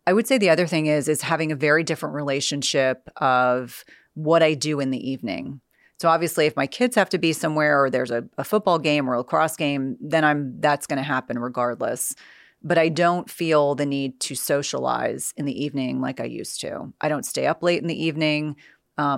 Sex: female